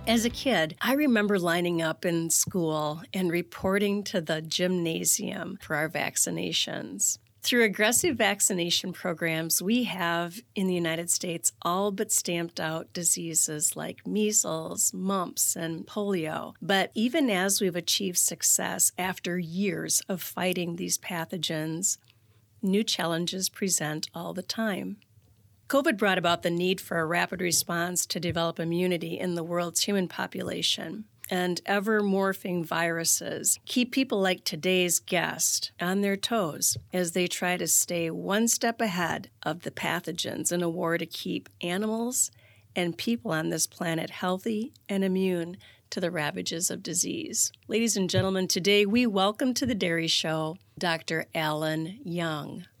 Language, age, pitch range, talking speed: English, 40-59, 165-200 Hz, 145 wpm